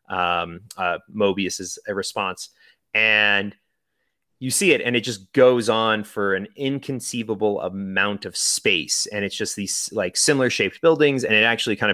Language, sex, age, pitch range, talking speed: English, male, 30-49, 100-115 Hz, 160 wpm